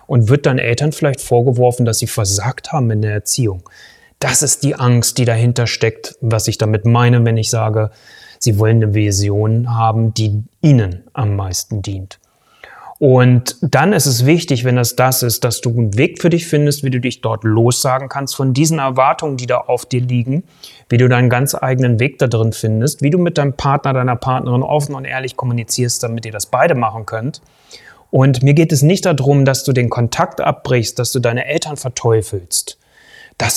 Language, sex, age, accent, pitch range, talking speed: German, male, 30-49, German, 115-145 Hz, 195 wpm